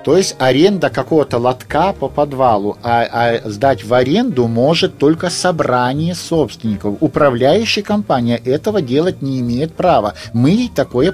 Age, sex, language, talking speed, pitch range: 50-69, male, Russian, 140 wpm, 130-175 Hz